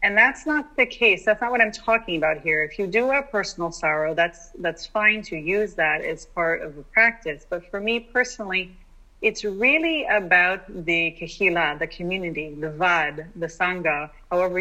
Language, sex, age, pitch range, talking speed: English, female, 30-49, 165-220 Hz, 185 wpm